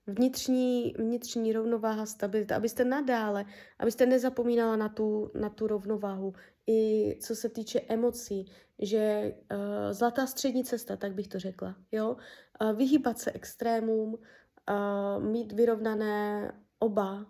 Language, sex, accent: Czech, female, native